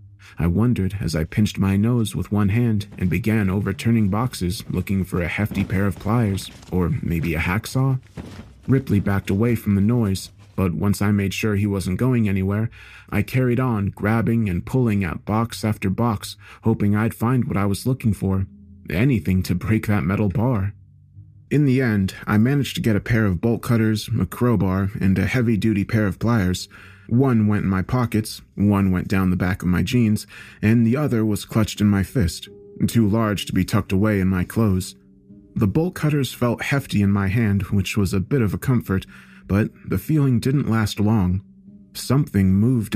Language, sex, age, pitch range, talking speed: English, male, 30-49, 95-115 Hz, 190 wpm